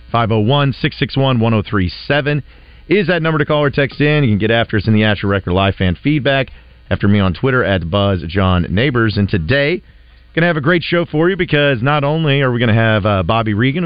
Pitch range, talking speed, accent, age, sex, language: 95-130 Hz, 200 wpm, American, 40-59, male, English